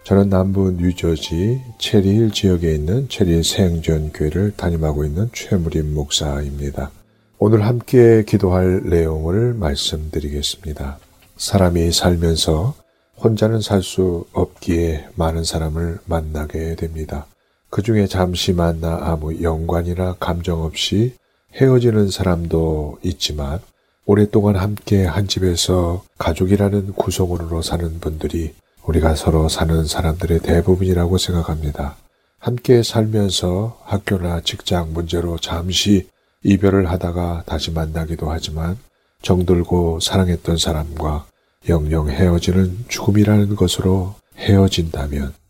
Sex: male